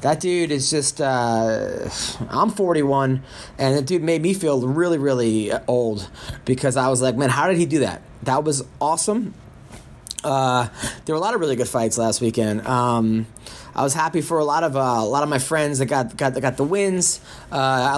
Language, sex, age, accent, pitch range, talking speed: English, male, 20-39, American, 130-175 Hz, 205 wpm